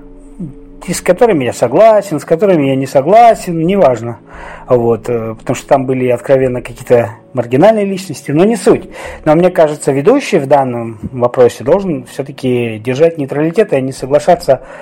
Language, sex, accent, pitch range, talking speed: Russian, male, native, 135-185 Hz, 140 wpm